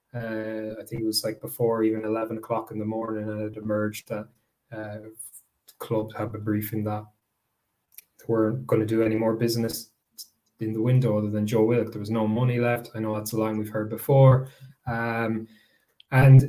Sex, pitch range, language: male, 110-115 Hz, English